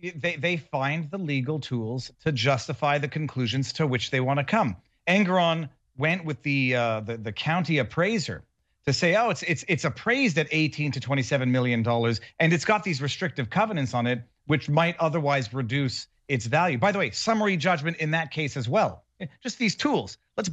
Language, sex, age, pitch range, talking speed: English, male, 40-59, 130-180 Hz, 195 wpm